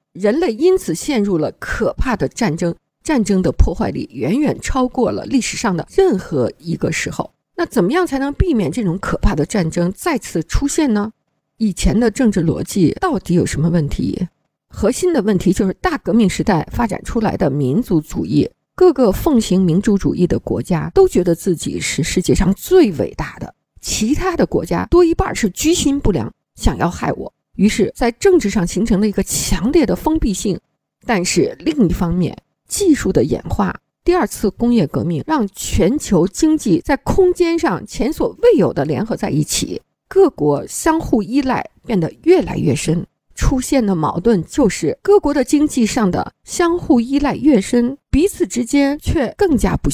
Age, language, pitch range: 50-69, Chinese, 185-310 Hz